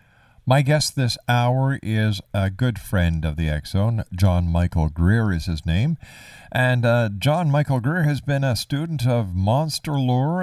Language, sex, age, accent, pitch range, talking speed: English, male, 50-69, American, 95-120 Hz, 165 wpm